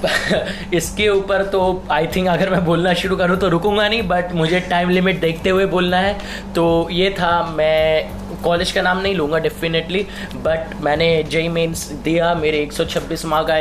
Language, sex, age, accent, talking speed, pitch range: Hindi, male, 20-39, native, 175 wpm, 155-185 Hz